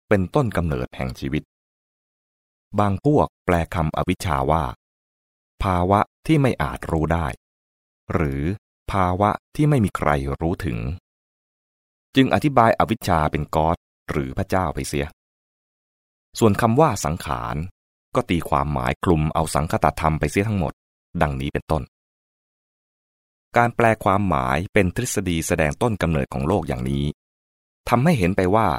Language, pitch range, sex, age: English, 70-105 Hz, male, 20-39